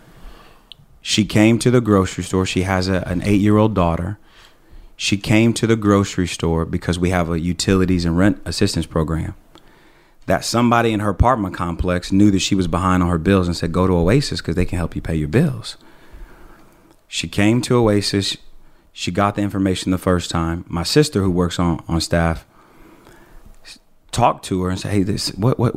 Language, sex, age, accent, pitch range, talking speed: English, male, 30-49, American, 85-100 Hz, 190 wpm